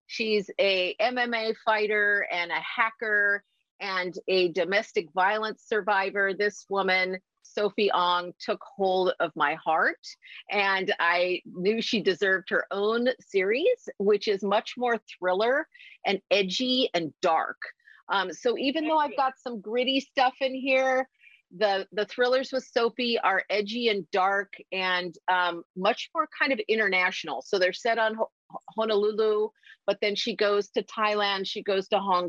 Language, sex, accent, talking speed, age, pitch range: English, female, American, 150 wpm, 40-59, 190-240 Hz